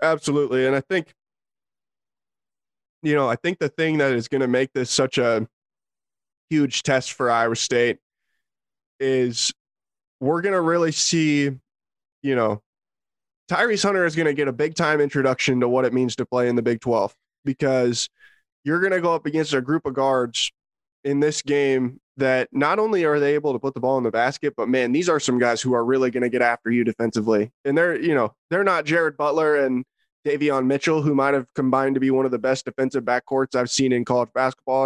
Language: English